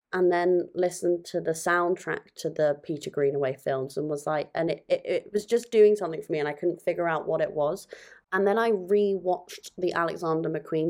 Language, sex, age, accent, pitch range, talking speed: English, female, 20-39, British, 150-175 Hz, 215 wpm